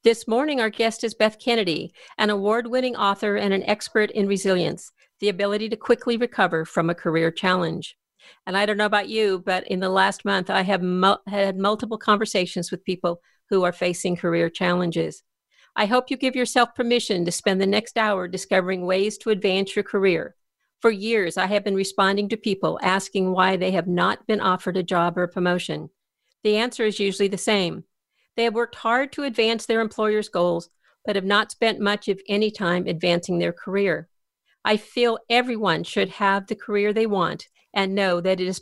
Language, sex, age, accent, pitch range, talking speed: English, female, 50-69, American, 185-220 Hz, 190 wpm